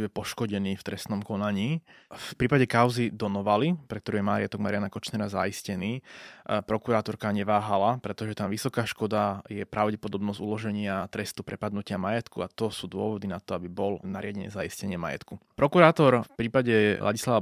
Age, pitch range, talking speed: 20-39, 100-120 Hz, 145 wpm